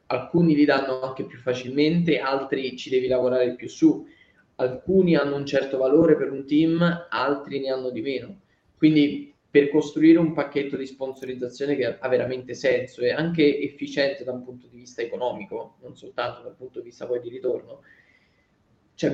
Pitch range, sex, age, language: 130-150 Hz, male, 20-39, Italian